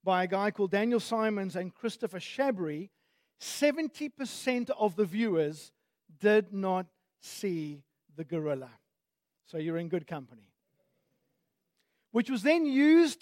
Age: 50-69